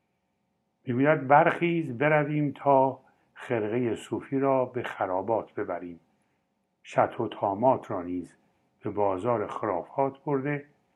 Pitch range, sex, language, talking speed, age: 100-145 Hz, male, Persian, 105 wpm, 60-79